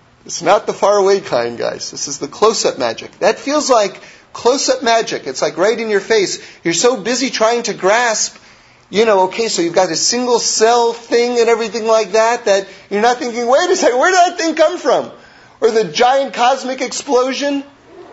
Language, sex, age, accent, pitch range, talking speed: English, male, 40-59, American, 230-285 Hz, 200 wpm